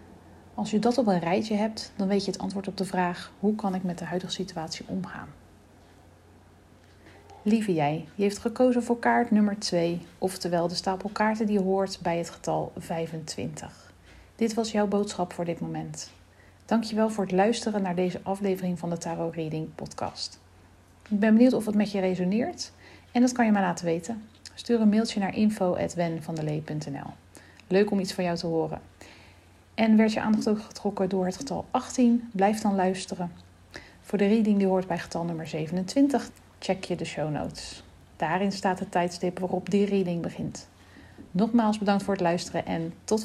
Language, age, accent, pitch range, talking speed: Dutch, 40-59, Dutch, 150-210 Hz, 185 wpm